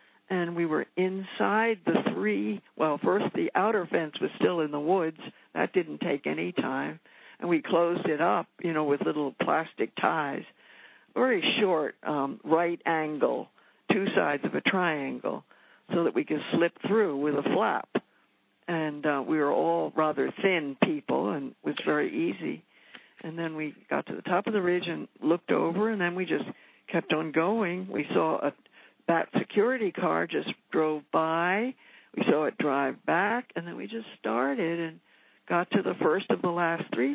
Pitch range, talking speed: 155-205 Hz, 180 wpm